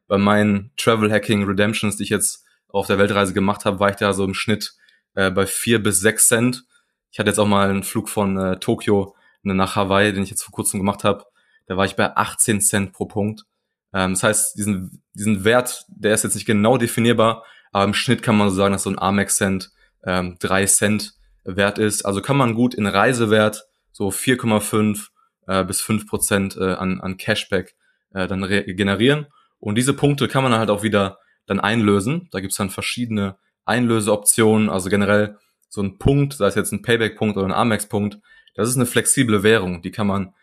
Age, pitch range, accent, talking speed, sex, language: 20-39, 100-110 Hz, German, 205 wpm, male, German